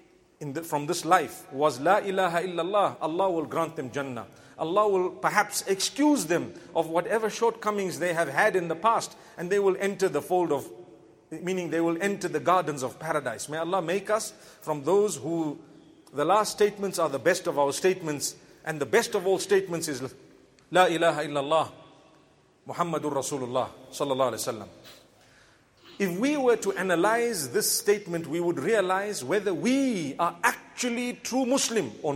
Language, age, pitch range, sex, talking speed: English, 40-59, 155-200 Hz, male, 170 wpm